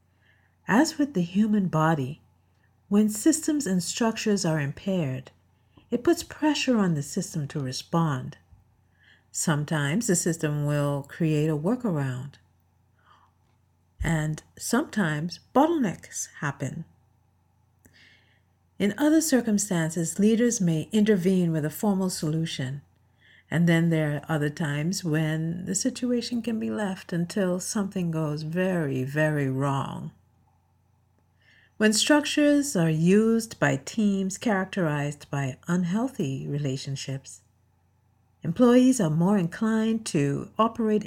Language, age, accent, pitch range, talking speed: English, 50-69, American, 130-195 Hz, 110 wpm